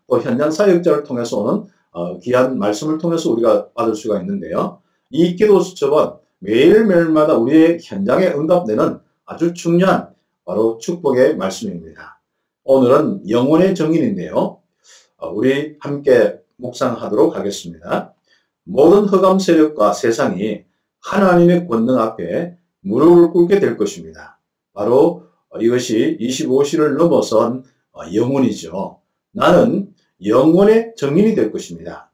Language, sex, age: Korean, male, 50-69